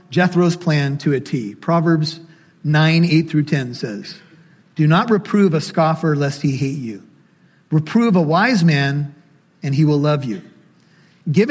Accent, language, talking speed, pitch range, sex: American, English, 150 wpm, 150-185 Hz, male